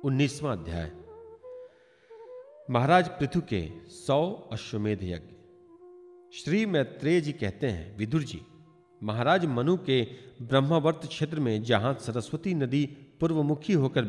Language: Hindi